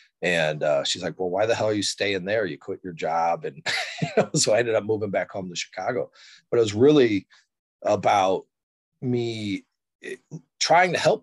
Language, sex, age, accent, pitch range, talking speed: English, male, 30-49, American, 75-110 Hz, 185 wpm